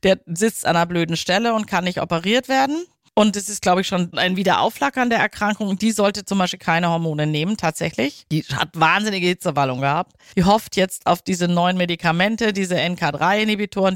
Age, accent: 40-59, German